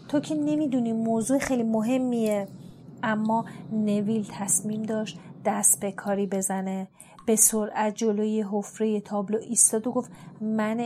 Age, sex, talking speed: 30-49, female, 125 wpm